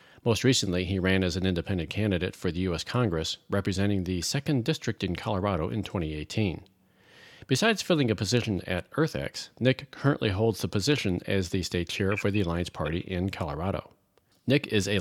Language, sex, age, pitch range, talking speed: English, male, 40-59, 95-115 Hz, 175 wpm